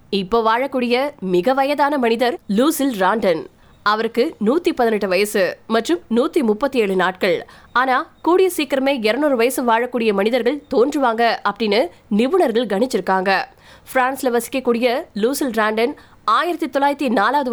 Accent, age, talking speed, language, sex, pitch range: native, 20-39, 35 wpm, Tamil, female, 215-280 Hz